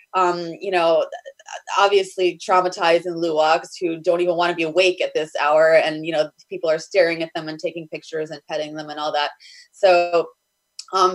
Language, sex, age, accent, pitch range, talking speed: English, female, 20-39, American, 160-195 Hz, 195 wpm